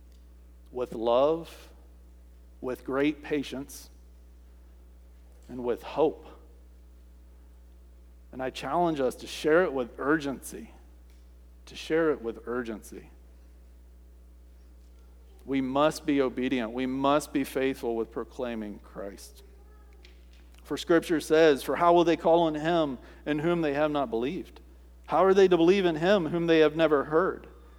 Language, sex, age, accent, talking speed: English, male, 50-69, American, 130 wpm